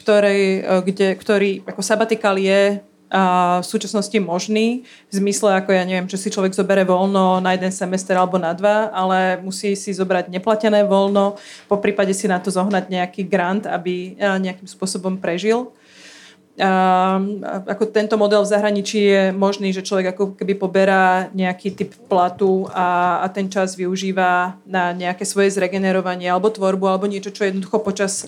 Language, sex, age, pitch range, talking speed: Slovak, female, 30-49, 185-205 Hz, 160 wpm